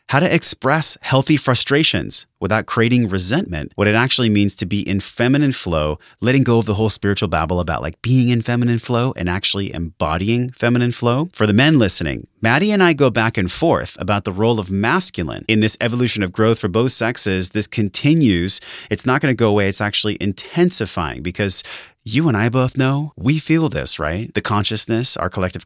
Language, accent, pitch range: English, American, 100-130 Hz